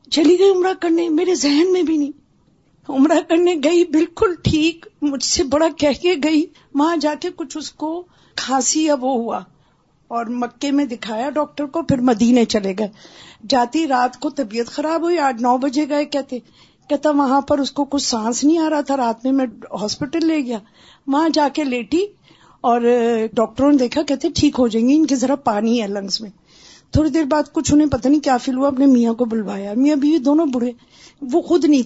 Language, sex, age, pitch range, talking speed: Urdu, female, 50-69, 240-310 Hz, 205 wpm